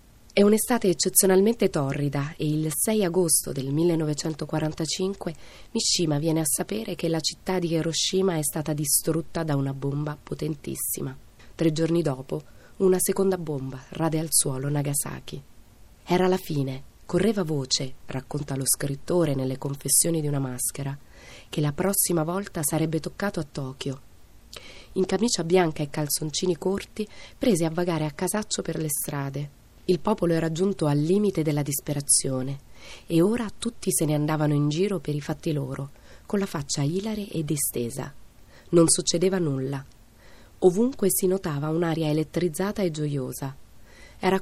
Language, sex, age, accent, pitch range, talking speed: Italian, female, 20-39, native, 140-180 Hz, 145 wpm